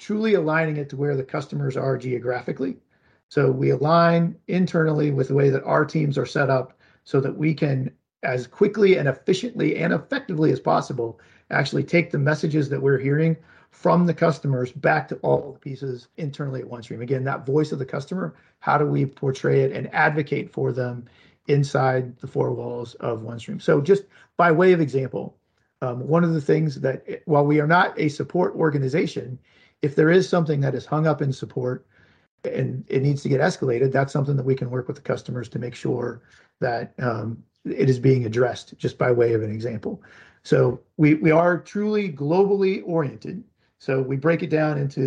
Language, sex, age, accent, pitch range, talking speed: English, male, 40-59, American, 130-160 Hz, 195 wpm